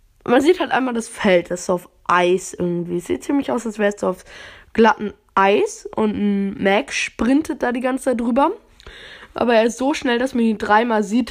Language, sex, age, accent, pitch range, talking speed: German, female, 10-29, German, 190-245 Hz, 210 wpm